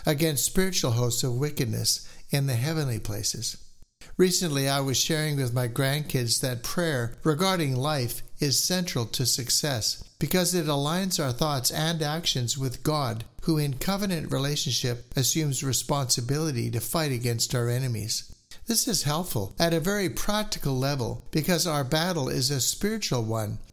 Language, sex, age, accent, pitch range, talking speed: English, male, 60-79, American, 125-160 Hz, 150 wpm